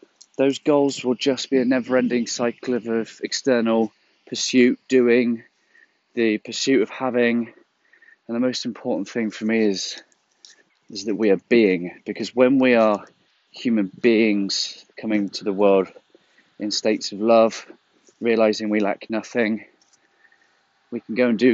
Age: 30-49